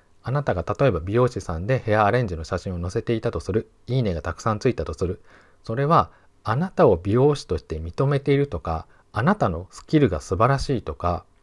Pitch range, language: 95-145 Hz, Japanese